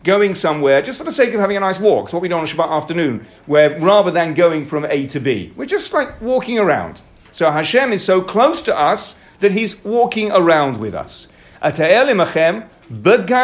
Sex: male